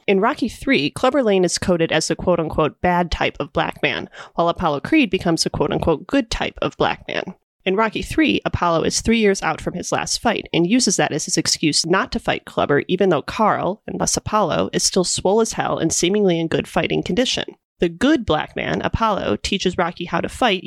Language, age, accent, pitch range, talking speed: English, 30-49, American, 160-210 Hz, 215 wpm